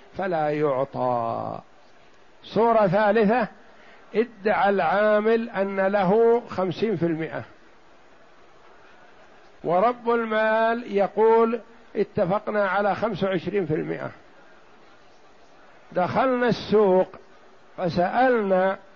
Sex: male